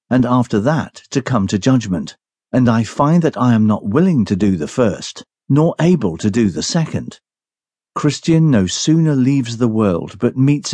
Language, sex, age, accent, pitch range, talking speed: English, male, 50-69, British, 105-155 Hz, 185 wpm